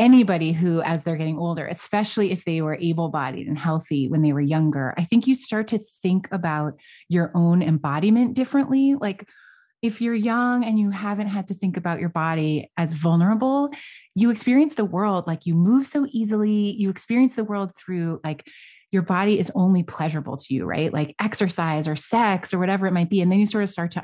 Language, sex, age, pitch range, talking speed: English, female, 30-49, 155-210 Hz, 205 wpm